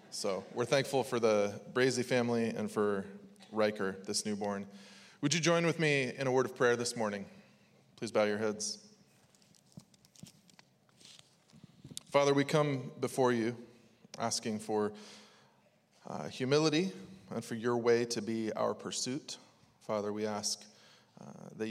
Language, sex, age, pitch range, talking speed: English, male, 20-39, 105-125 Hz, 140 wpm